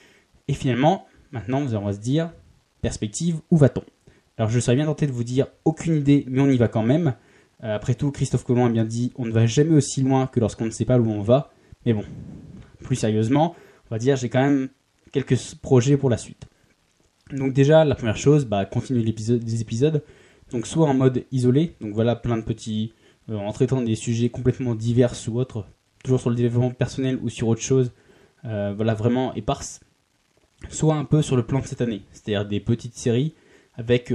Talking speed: 205 wpm